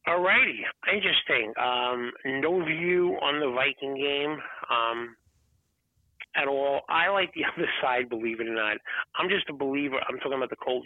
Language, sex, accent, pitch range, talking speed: English, male, American, 125-170 Hz, 170 wpm